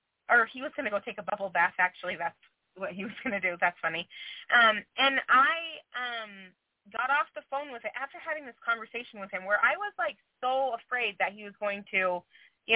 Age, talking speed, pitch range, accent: 20-39, 225 wpm, 205-270 Hz, American